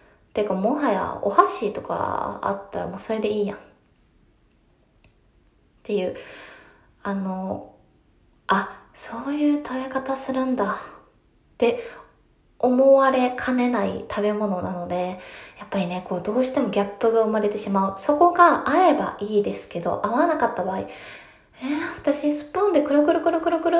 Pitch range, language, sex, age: 200-310 Hz, Japanese, female, 20-39